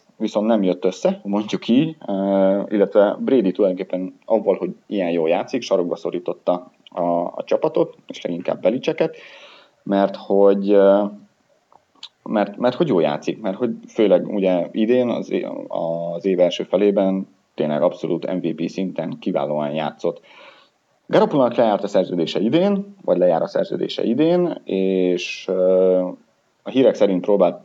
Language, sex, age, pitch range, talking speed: Hungarian, male, 30-49, 90-125 Hz, 130 wpm